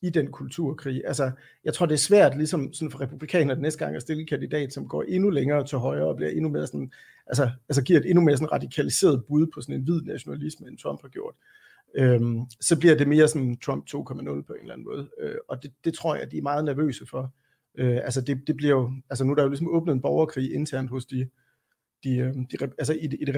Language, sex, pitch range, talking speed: Danish, male, 135-165 Hz, 245 wpm